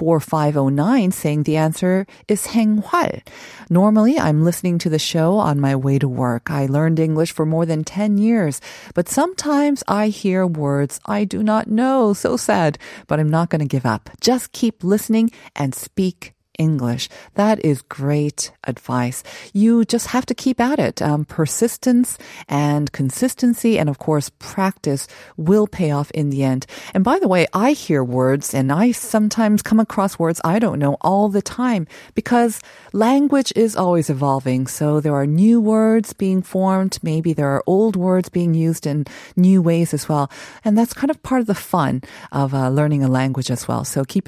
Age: 40-59